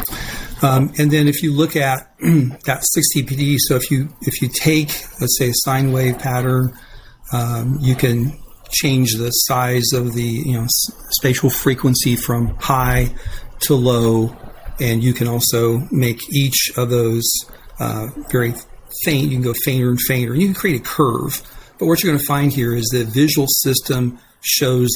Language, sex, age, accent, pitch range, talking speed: English, male, 40-59, American, 120-145 Hz, 175 wpm